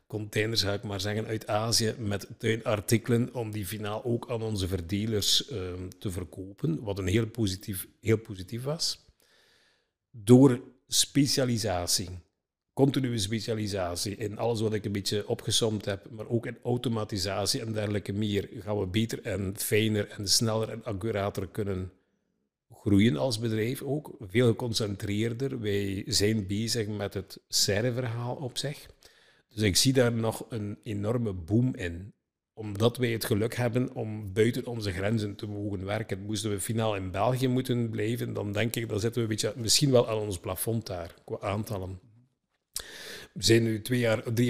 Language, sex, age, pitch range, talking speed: Dutch, male, 50-69, 100-115 Hz, 155 wpm